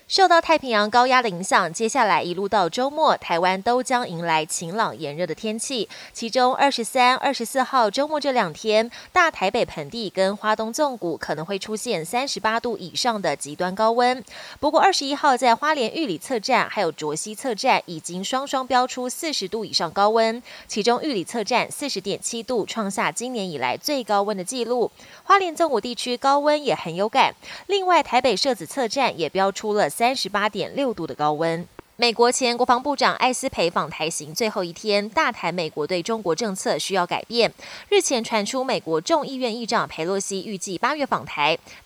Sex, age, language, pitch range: female, 20-39, Chinese, 190-265 Hz